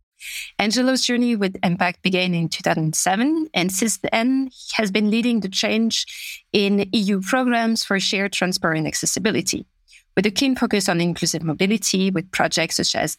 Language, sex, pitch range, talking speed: English, female, 180-220 Hz, 160 wpm